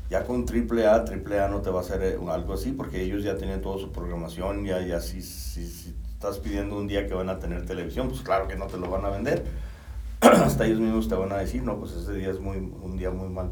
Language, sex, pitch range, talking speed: Spanish, male, 80-100 Hz, 255 wpm